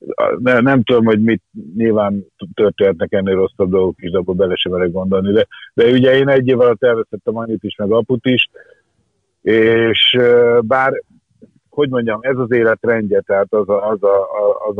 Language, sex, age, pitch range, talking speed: Hungarian, male, 50-69, 100-125 Hz, 170 wpm